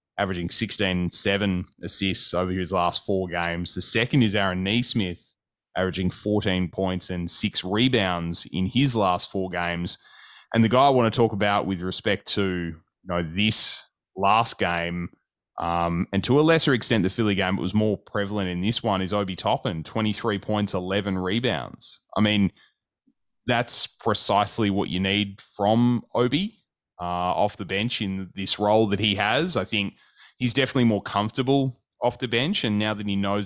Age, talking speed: 20-39, 175 wpm